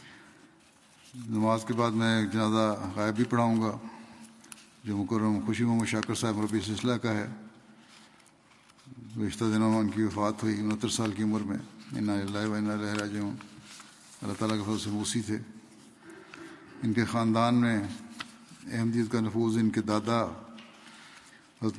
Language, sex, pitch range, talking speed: Urdu, male, 110-115 Hz, 135 wpm